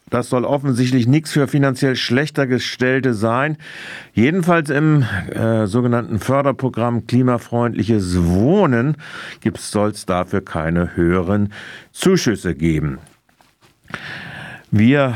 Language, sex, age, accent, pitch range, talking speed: German, male, 50-69, German, 95-130 Hz, 95 wpm